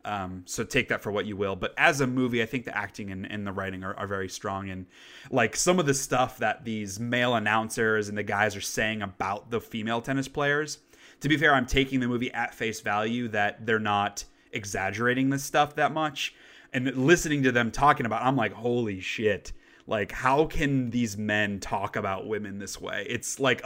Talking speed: 215 wpm